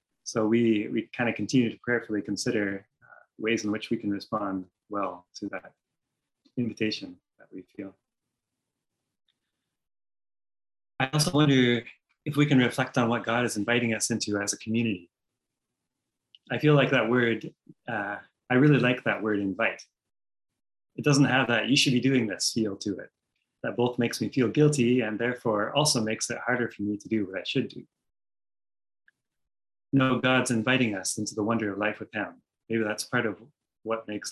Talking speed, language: 175 wpm, English